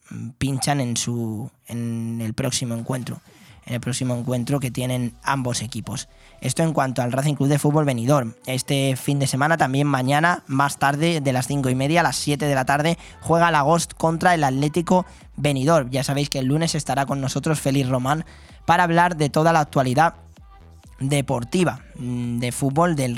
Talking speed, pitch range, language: 180 wpm, 130-165 Hz, Spanish